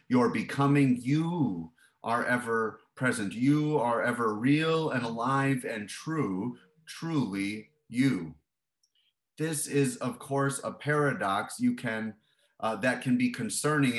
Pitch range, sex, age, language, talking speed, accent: 105-145 Hz, male, 30-49, English, 130 wpm, American